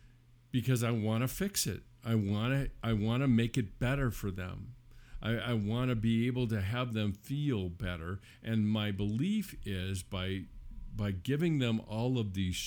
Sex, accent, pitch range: male, American, 100-125 Hz